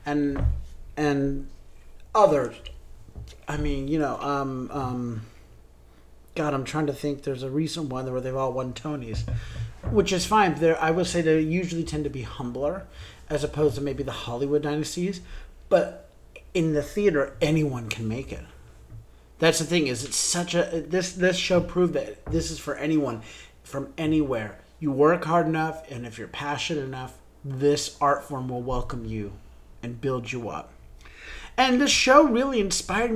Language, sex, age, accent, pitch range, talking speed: English, male, 30-49, American, 130-170 Hz, 170 wpm